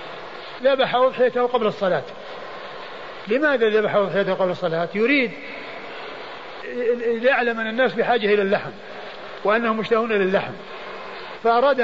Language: Arabic